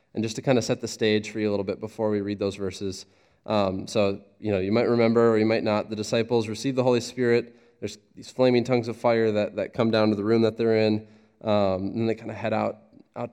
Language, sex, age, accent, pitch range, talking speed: English, male, 20-39, American, 100-115 Hz, 265 wpm